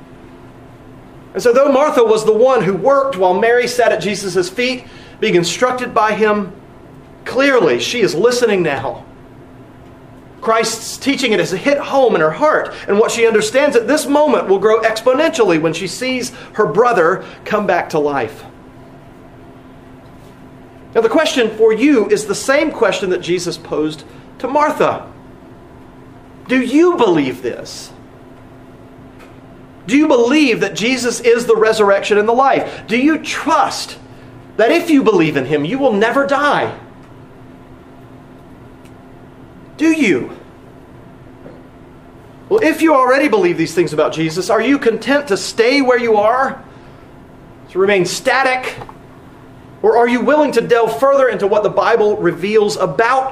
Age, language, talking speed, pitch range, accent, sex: 40-59, English, 145 wpm, 195-275 Hz, American, male